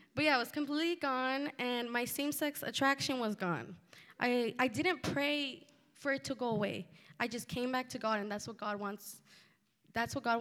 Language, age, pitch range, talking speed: English, 20-39, 205-260 Hz, 200 wpm